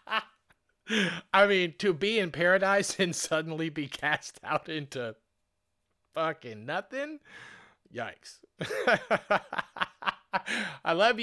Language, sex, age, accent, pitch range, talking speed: English, male, 30-49, American, 110-170 Hz, 90 wpm